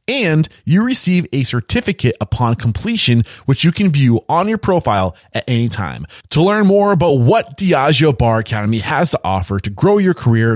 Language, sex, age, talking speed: English, male, 20-39, 180 wpm